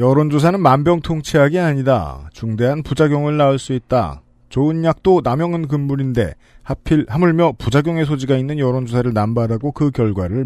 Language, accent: Korean, native